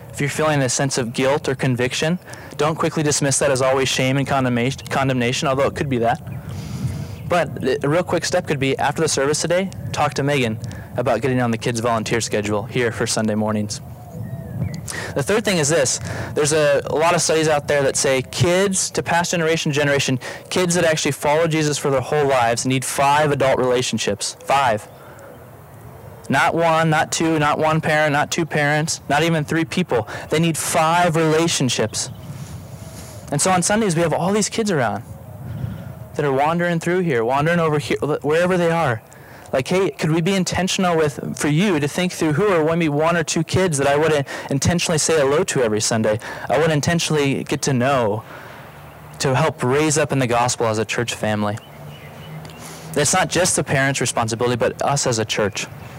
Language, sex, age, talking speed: English, male, 20-39, 190 wpm